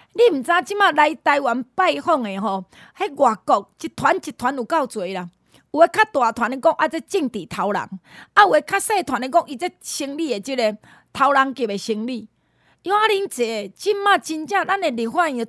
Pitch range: 235-340 Hz